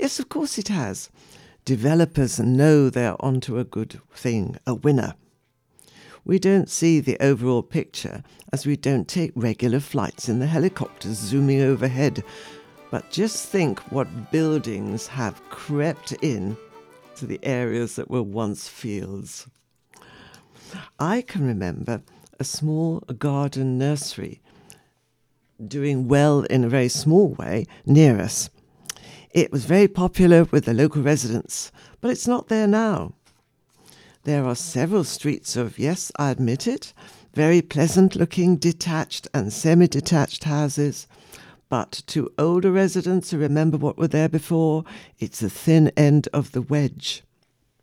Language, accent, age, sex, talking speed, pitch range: English, British, 60-79, female, 135 wpm, 130-165 Hz